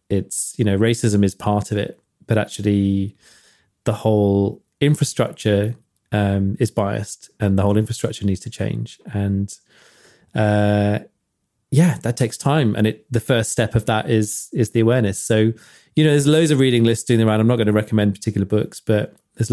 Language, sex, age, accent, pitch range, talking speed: English, male, 20-39, British, 105-120 Hz, 180 wpm